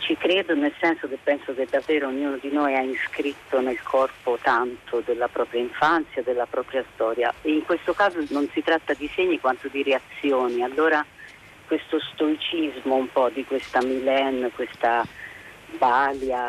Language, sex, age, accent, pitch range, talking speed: Italian, female, 40-59, native, 130-150 Hz, 155 wpm